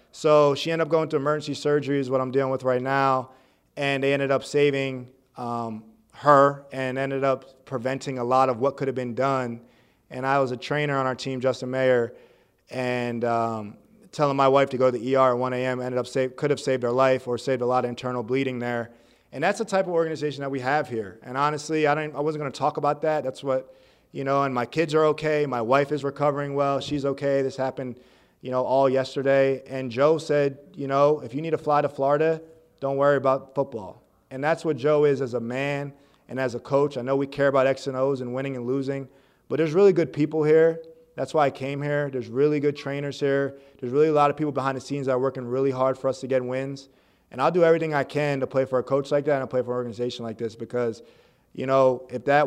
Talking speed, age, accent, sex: 245 wpm, 30-49, American, male